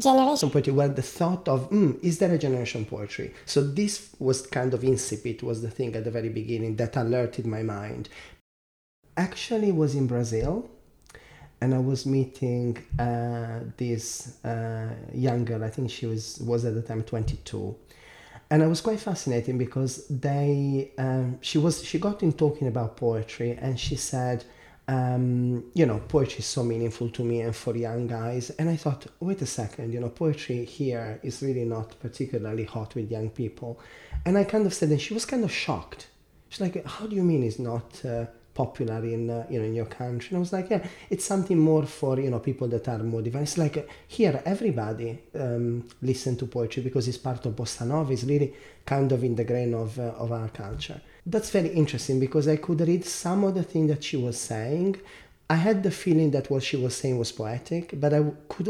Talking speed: 200 wpm